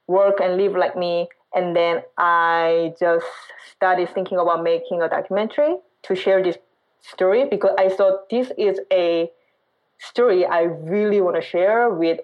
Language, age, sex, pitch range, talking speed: English, 20-39, female, 170-205 Hz, 155 wpm